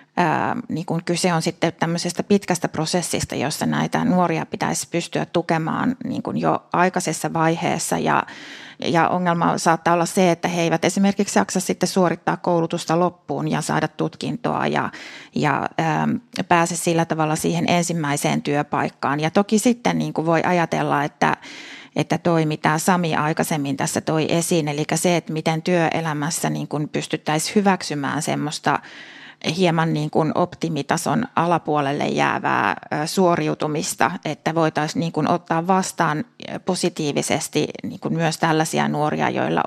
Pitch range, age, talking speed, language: 155-180 Hz, 30-49, 110 wpm, Finnish